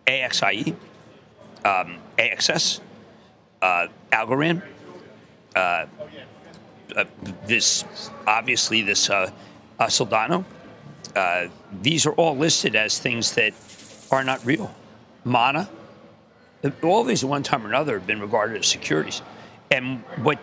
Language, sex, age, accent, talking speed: English, male, 50-69, American, 100 wpm